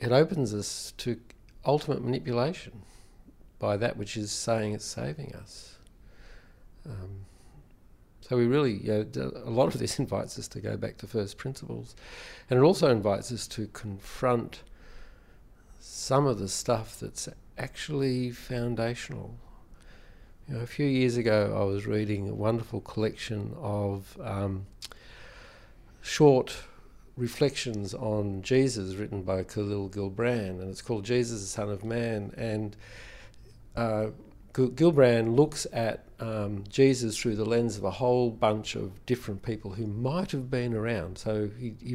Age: 50-69